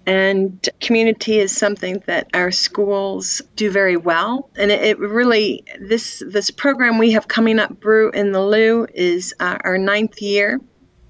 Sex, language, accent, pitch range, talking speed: female, English, American, 190-220 Hz, 160 wpm